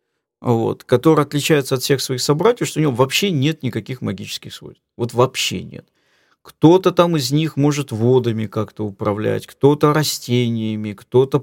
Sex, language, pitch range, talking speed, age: male, English, 120-160 Hz, 145 wpm, 40-59